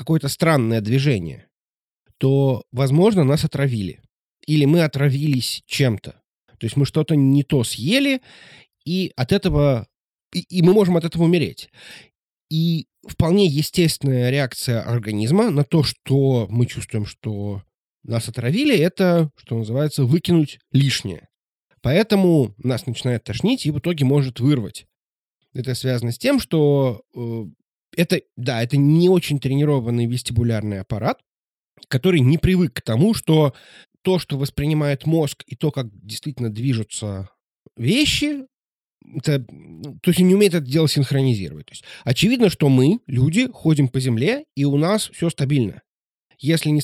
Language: Russian